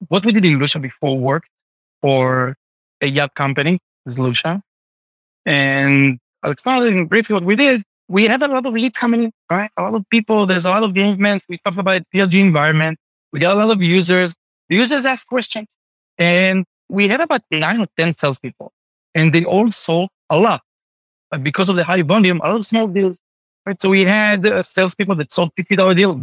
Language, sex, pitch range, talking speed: English, male, 155-215 Hz, 195 wpm